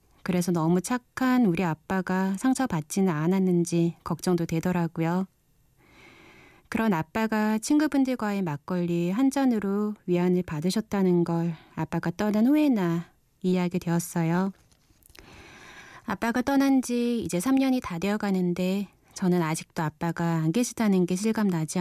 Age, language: 20-39, Korean